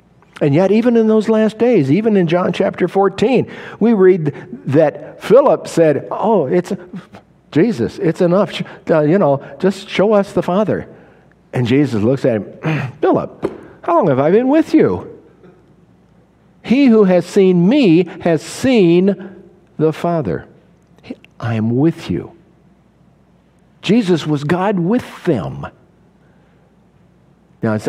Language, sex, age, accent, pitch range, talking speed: English, male, 60-79, American, 120-185 Hz, 130 wpm